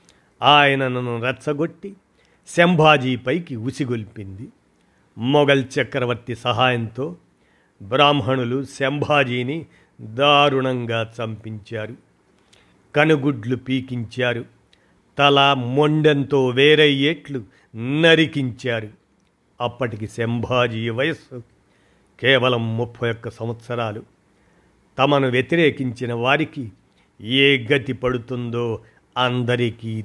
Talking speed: 60 wpm